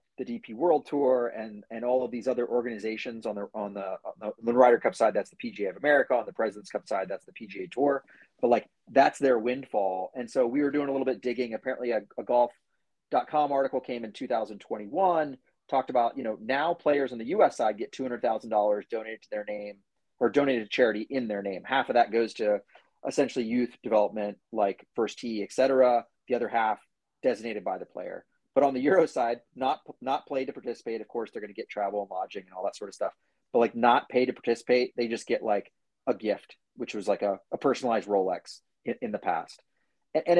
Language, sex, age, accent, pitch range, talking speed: English, male, 30-49, American, 110-130 Hz, 220 wpm